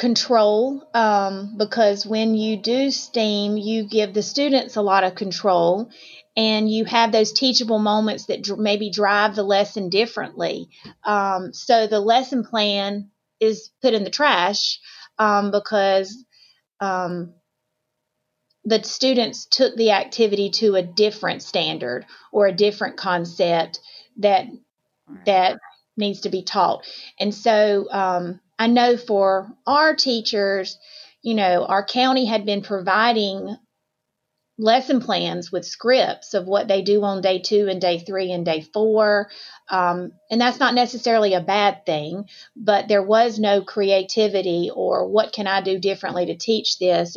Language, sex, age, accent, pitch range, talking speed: English, female, 30-49, American, 190-220 Hz, 145 wpm